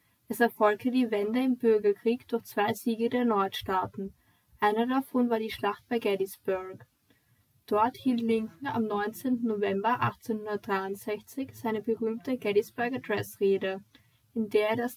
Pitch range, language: 205-240 Hz, German